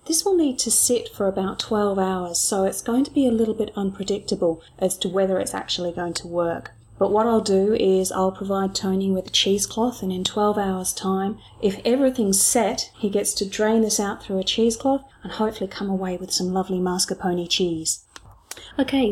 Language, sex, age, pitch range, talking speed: English, female, 30-49, 185-220 Hz, 200 wpm